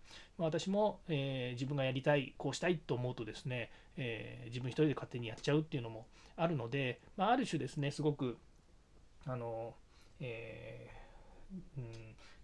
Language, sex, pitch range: Japanese, male, 125-180 Hz